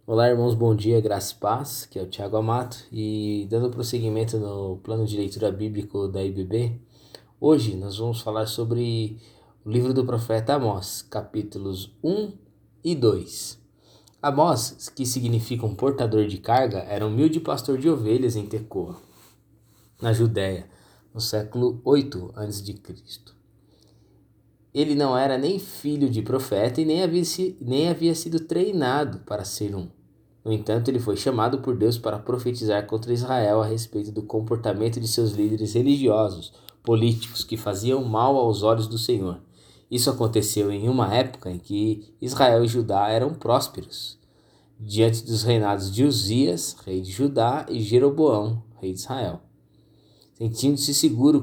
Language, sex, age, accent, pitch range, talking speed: Portuguese, male, 20-39, Brazilian, 105-125 Hz, 150 wpm